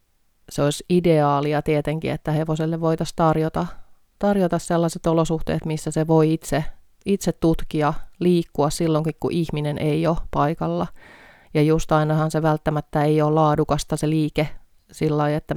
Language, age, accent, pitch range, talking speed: Finnish, 30-49, native, 145-160 Hz, 140 wpm